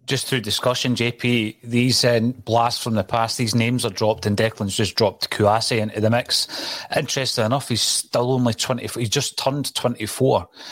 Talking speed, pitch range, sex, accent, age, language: 180 wpm, 110-135 Hz, male, British, 30-49, English